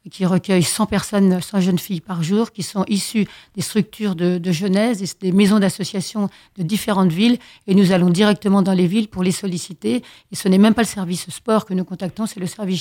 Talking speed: 215 wpm